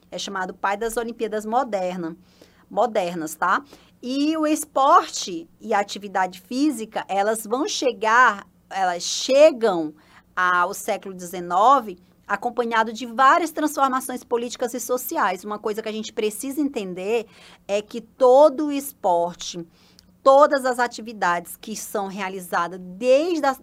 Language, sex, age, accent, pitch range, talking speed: Portuguese, female, 20-39, Brazilian, 190-245 Hz, 120 wpm